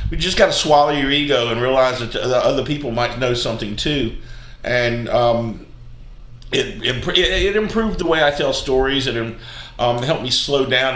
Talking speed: 185 wpm